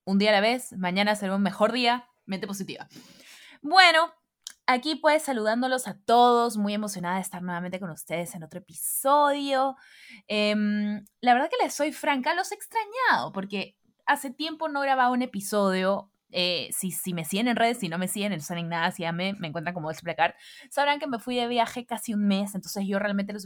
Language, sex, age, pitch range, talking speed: Spanish, female, 20-39, 185-255 Hz, 205 wpm